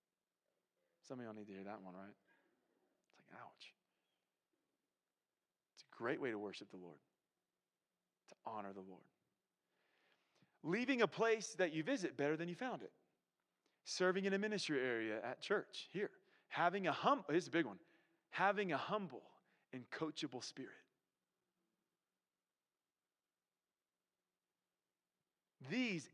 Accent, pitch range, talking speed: American, 130-180 Hz, 130 wpm